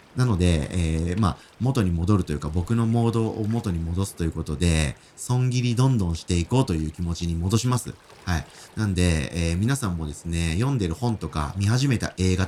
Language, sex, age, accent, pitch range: Japanese, male, 40-59, native, 85-125 Hz